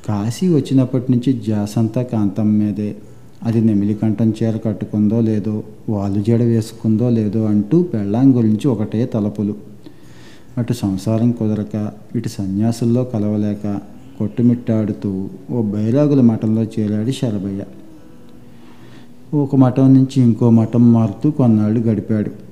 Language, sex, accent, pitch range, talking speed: Telugu, male, native, 105-125 Hz, 110 wpm